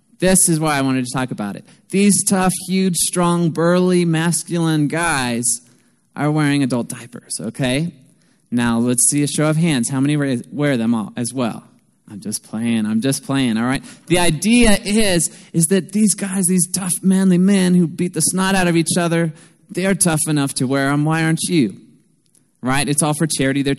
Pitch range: 130-180 Hz